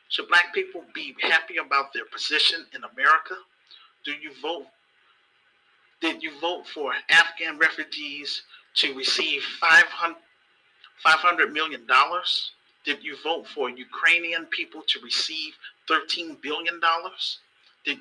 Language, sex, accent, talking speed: English, male, American, 125 wpm